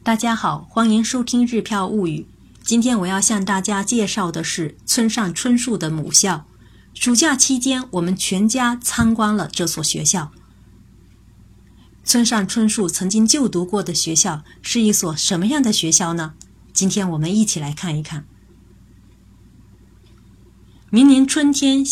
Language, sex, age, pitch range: Chinese, female, 30-49, 155-215 Hz